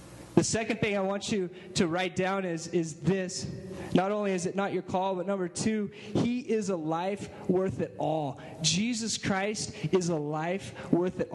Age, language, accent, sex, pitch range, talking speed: 20-39, English, American, male, 150-200 Hz, 190 wpm